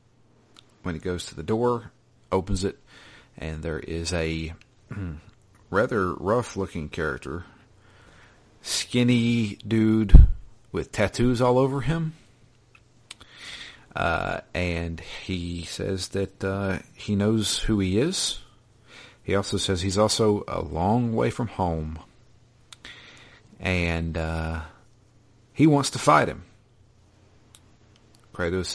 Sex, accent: male, American